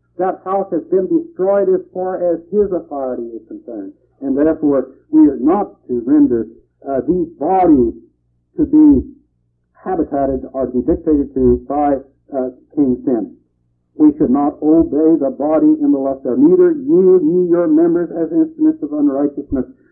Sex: male